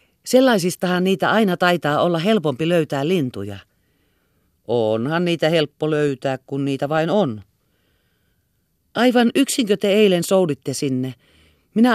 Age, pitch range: 40-59, 110-180 Hz